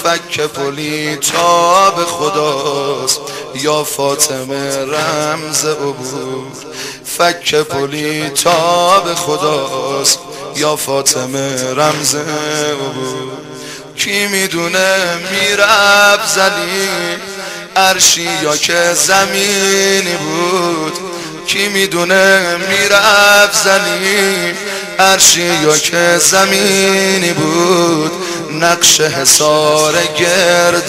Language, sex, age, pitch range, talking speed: Persian, male, 30-49, 150-190 Hz, 70 wpm